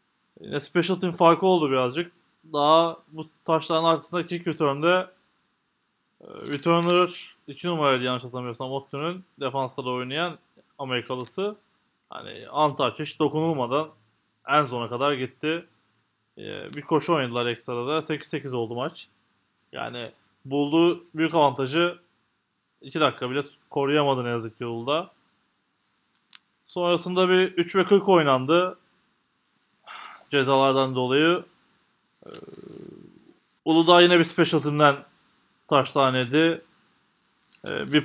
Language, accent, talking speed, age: Turkish, native, 95 wpm, 20-39